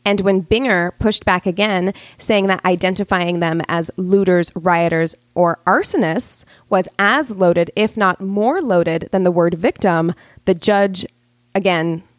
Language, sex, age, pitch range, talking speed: English, female, 20-39, 175-215 Hz, 145 wpm